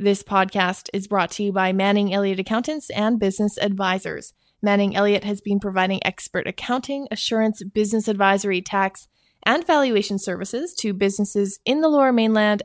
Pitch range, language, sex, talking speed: 190-220 Hz, English, female, 155 wpm